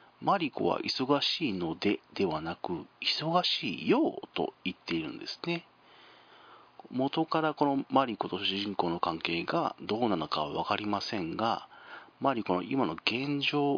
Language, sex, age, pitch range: Japanese, male, 40-59, 115-165 Hz